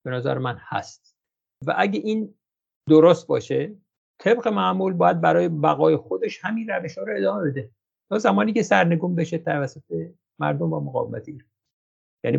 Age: 50-69